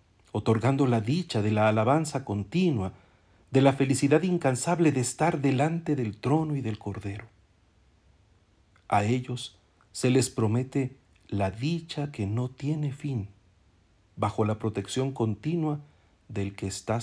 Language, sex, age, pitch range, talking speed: Spanish, male, 50-69, 95-130 Hz, 130 wpm